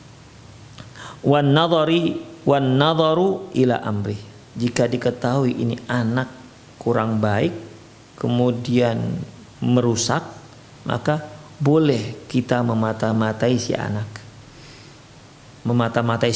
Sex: male